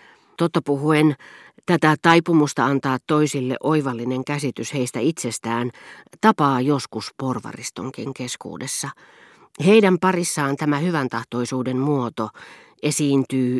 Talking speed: 95 wpm